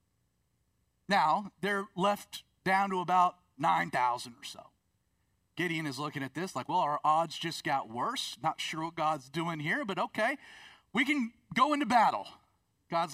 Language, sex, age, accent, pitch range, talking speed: English, male, 40-59, American, 155-240 Hz, 160 wpm